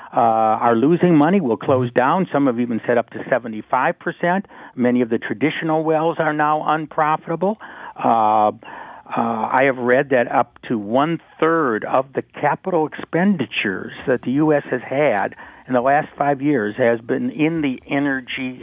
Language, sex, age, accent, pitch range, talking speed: English, male, 60-79, American, 115-155 Hz, 160 wpm